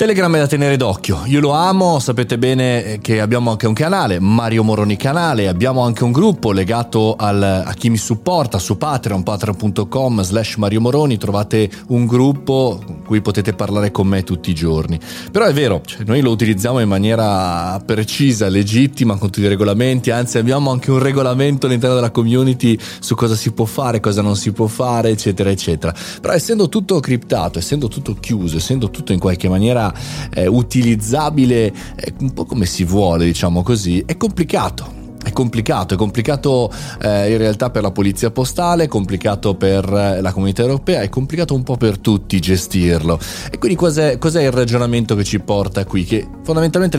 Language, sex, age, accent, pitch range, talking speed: Italian, male, 30-49, native, 100-130 Hz, 180 wpm